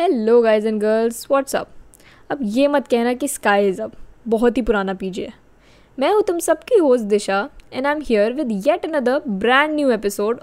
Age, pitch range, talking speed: 10-29, 220-285 Hz, 115 wpm